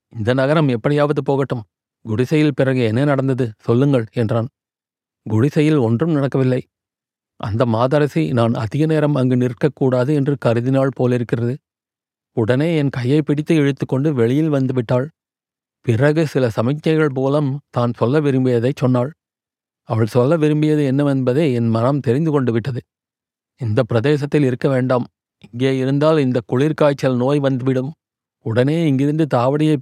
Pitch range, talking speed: 125-150 Hz, 120 wpm